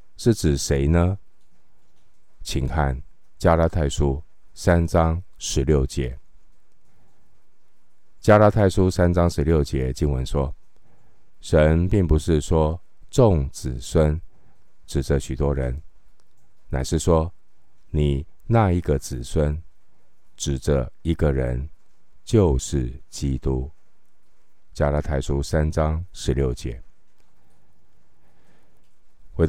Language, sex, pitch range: Chinese, male, 70-85 Hz